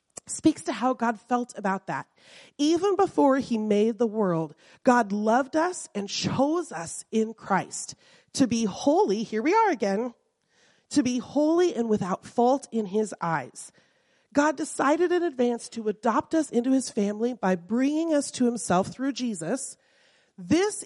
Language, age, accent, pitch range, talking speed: English, 30-49, American, 195-255 Hz, 160 wpm